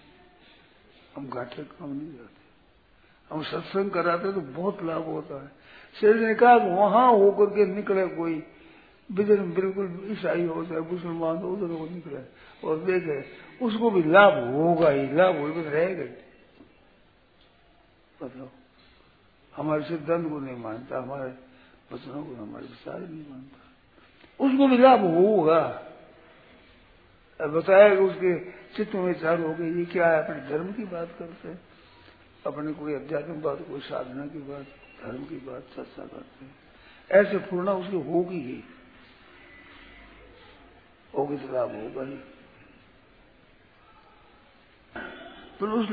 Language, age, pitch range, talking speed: Hindi, 60-79, 155-200 Hz, 135 wpm